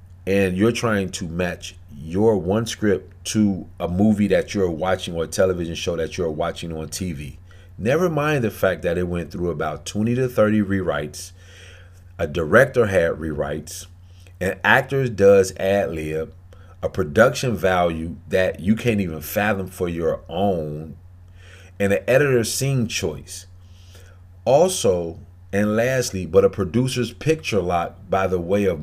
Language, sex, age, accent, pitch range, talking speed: English, male, 40-59, American, 90-105 Hz, 155 wpm